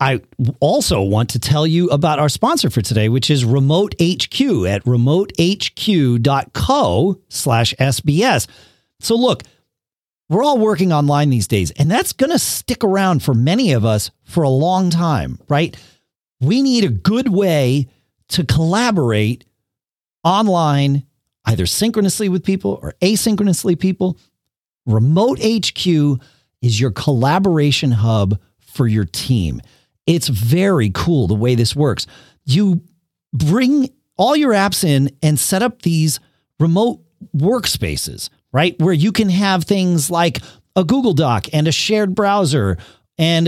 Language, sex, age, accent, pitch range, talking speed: English, male, 40-59, American, 130-195 Hz, 135 wpm